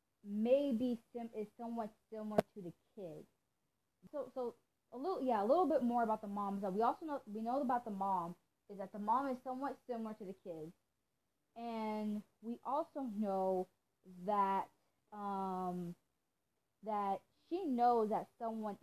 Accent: American